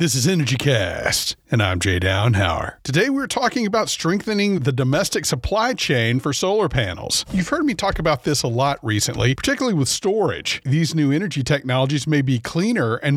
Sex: male